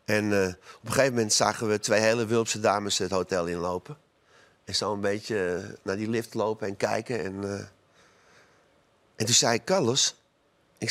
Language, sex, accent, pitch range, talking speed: Dutch, male, Dutch, 105-135 Hz, 185 wpm